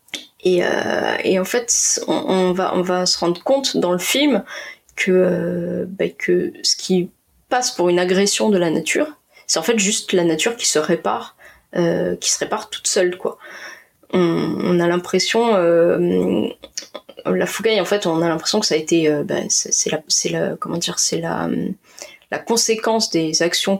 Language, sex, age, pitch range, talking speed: French, female, 20-39, 170-225 Hz, 190 wpm